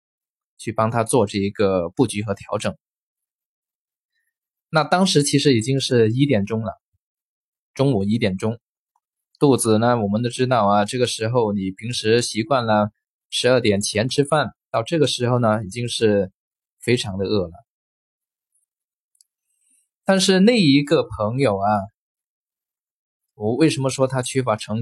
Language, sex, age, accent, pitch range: Chinese, male, 20-39, native, 105-135 Hz